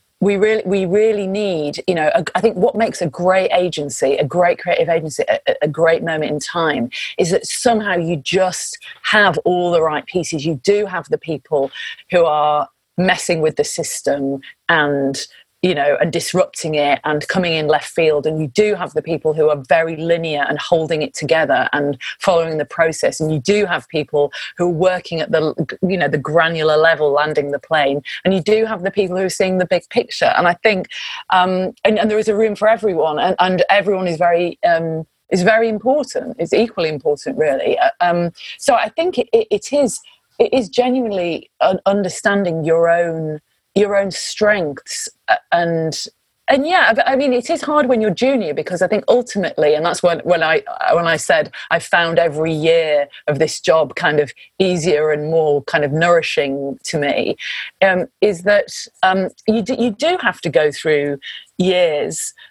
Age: 30-49